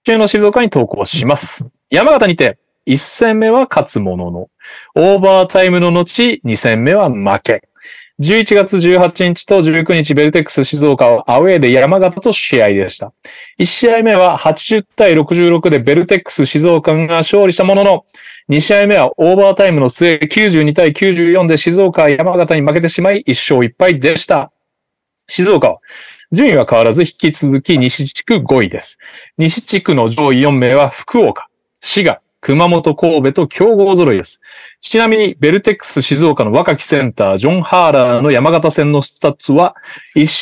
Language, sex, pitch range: Japanese, male, 145-190 Hz